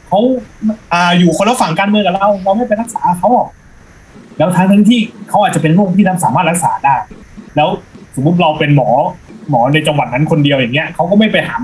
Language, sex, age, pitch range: Thai, male, 20-39, 145-185 Hz